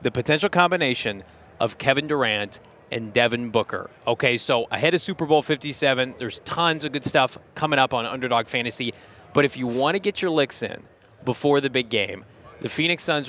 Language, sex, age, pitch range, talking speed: English, male, 30-49, 125-160 Hz, 190 wpm